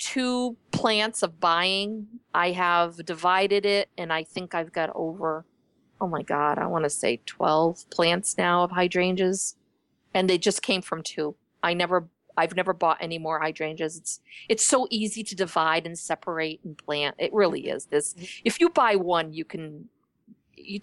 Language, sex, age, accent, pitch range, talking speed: English, female, 40-59, American, 170-205 Hz, 175 wpm